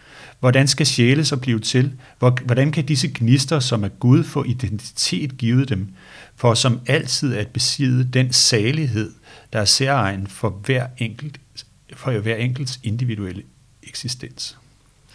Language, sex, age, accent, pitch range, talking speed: Danish, male, 60-79, native, 110-130 Hz, 140 wpm